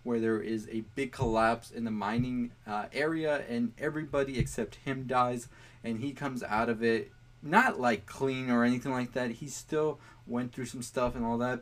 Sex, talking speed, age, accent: male, 195 wpm, 20-39, American